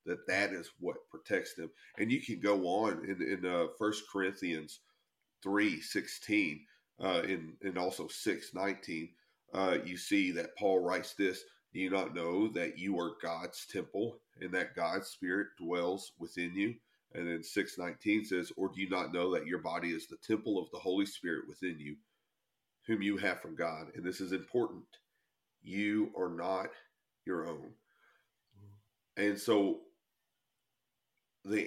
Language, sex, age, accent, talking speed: English, male, 40-59, American, 165 wpm